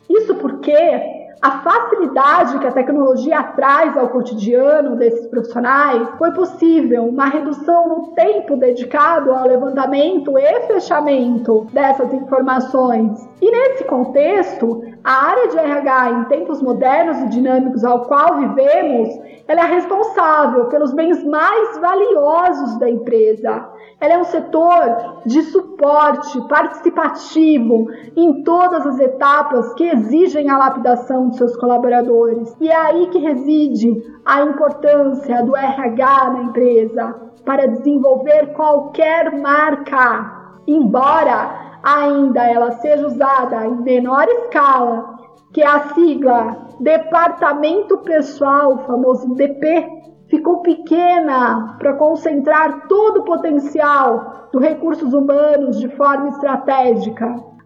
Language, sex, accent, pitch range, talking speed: Portuguese, female, Brazilian, 255-315 Hz, 115 wpm